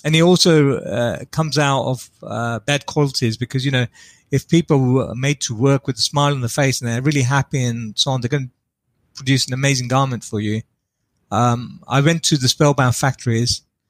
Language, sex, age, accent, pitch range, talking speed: English, male, 30-49, British, 120-150 Hz, 205 wpm